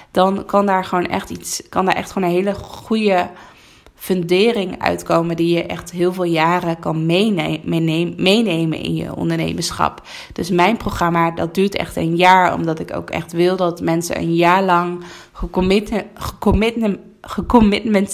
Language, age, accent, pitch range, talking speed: Dutch, 20-39, Dutch, 165-195 Hz, 150 wpm